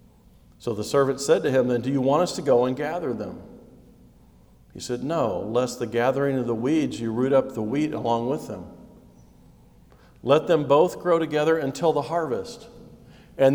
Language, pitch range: English, 120-150 Hz